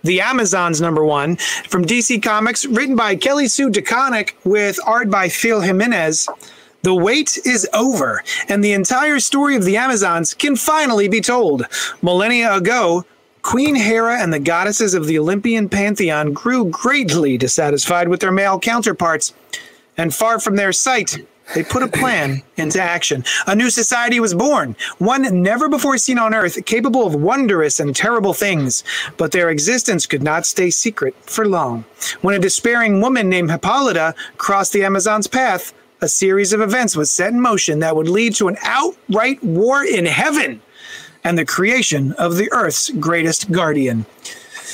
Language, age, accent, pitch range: English, 30-49, American, 170-240 Hz